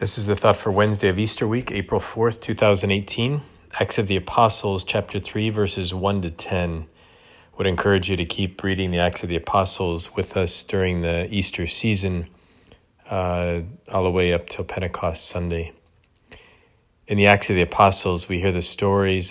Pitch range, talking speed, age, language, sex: 90-105 Hz, 180 wpm, 40-59, English, male